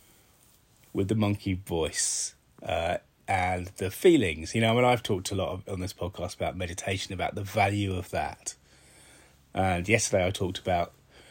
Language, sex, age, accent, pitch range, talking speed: English, male, 30-49, British, 95-115 Hz, 170 wpm